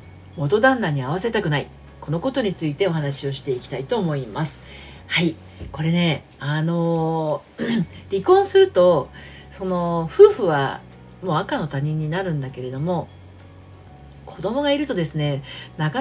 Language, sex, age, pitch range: Japanese, female, 40-59, 140-210 Hz